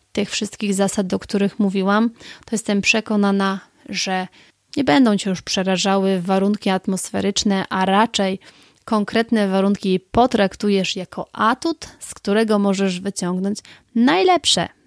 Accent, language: native, Polish